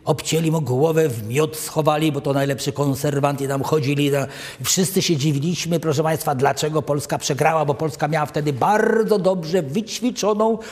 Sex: male